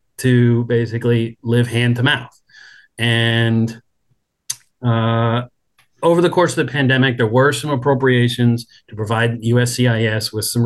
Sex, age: male, 40-59